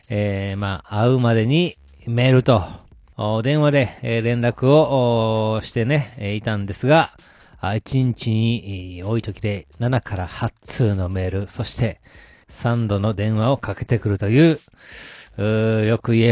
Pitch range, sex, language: 105-135 Hz, male, Japanese